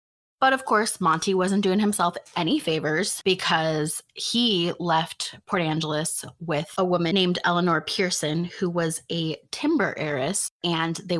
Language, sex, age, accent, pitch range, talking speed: English, female, 20-39, American, 155-185 Hz, 145 wpm